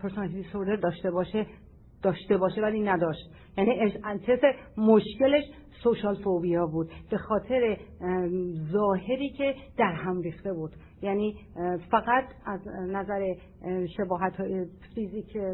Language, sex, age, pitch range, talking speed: Persian, female, 40-59, 185-235 Hz, 100 wpm